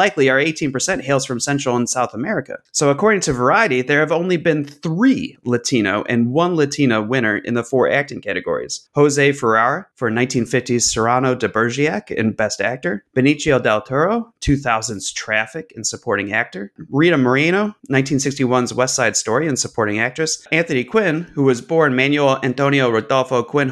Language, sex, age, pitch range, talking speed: English, male, 30-49, 115-145 Hz, 160 wpm